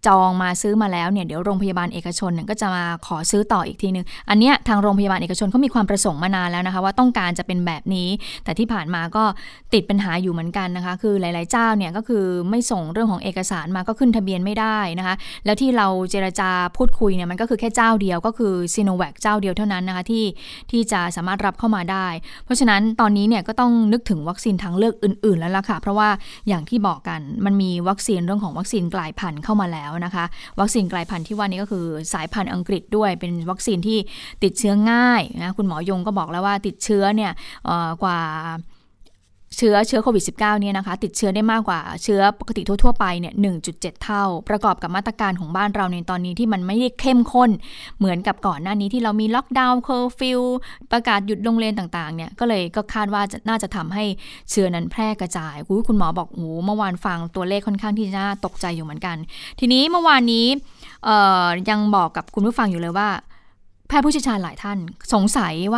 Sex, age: female, 20-39